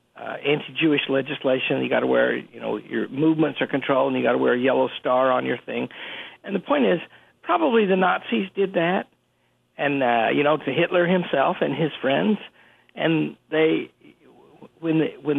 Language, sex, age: English, male, 60-79